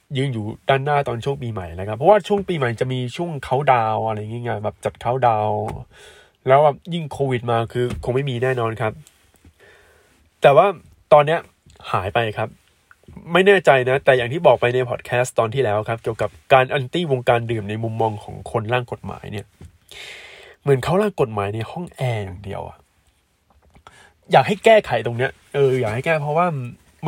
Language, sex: Thai, male